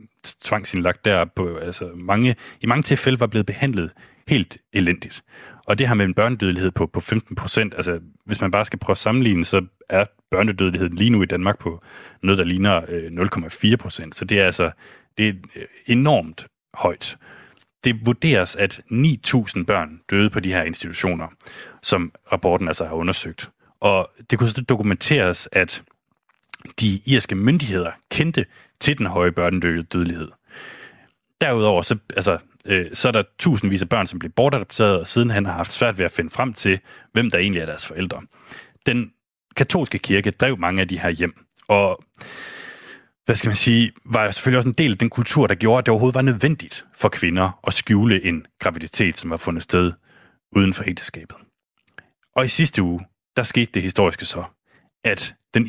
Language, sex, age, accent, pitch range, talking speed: Danish, male, 30-49, native, 90-120 Hz, 180 wpm